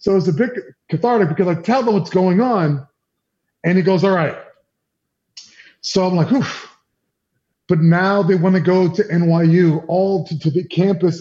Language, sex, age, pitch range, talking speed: English, male, 30-49, 150-195 Hz, 180 wpm